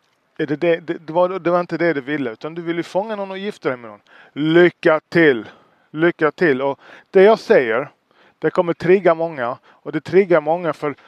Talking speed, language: 190 wpm, Swedish